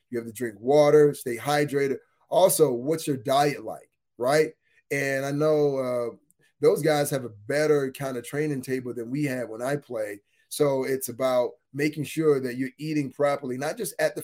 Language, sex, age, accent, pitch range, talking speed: English, male, 30-49, American, 130-150 Hz, 190 wpm